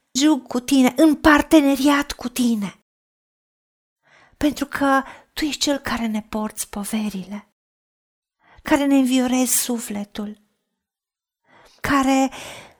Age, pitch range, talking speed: 40-59, 215-270 Hz, 95 wpm